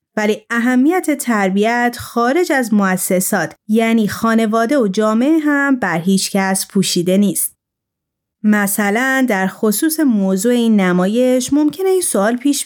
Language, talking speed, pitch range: Persian, 125 wpm, 195-280 Hz